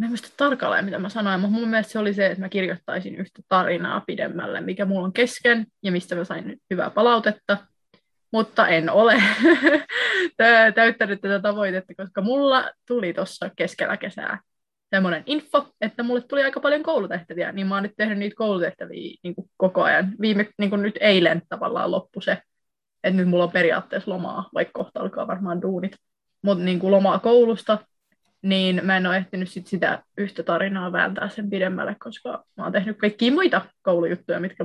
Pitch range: 185-220 Hz